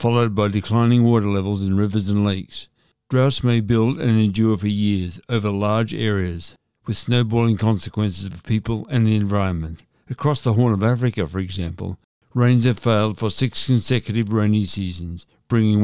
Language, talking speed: English, 165 wpm